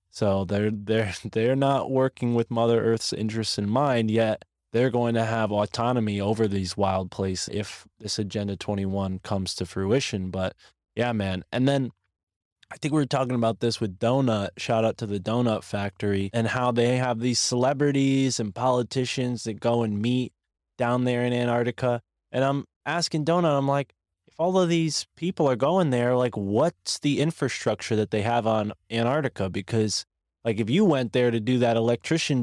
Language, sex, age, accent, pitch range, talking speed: English, male, 20-39, American, 110-140 Hz, 180 wpm